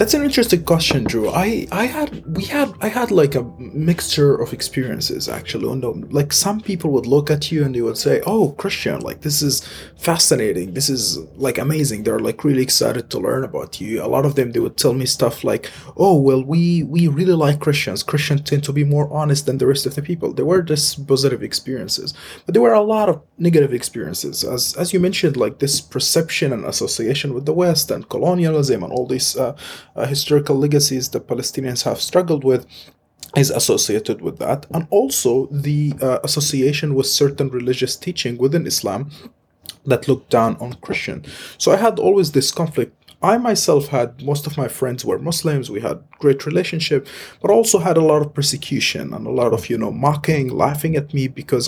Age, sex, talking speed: 30-49, male, 200 wpm